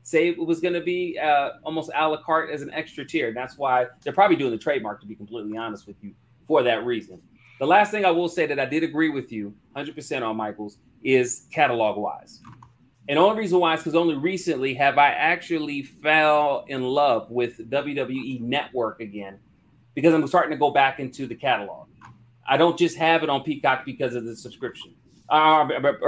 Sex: male